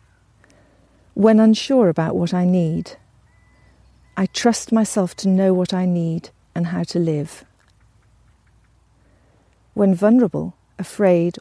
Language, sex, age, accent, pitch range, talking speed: English, female, 50-69, British, 130-200 Hz, 110 wpm